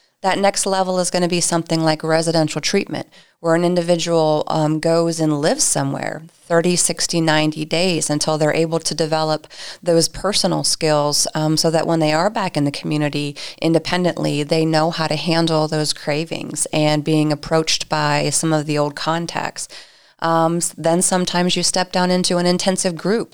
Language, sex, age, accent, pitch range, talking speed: English, female, 30-49, American, 155-180 Hz, 175 wpm